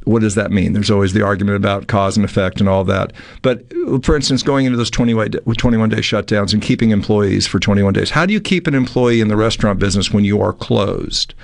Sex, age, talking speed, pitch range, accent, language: male, 50-69, 225 wpm, 100-130 Hz, American, English